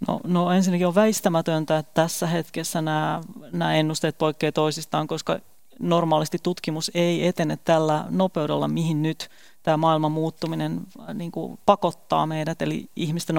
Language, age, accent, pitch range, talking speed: Finnish, 30-49, native, 155-175 Hz, 135 wpm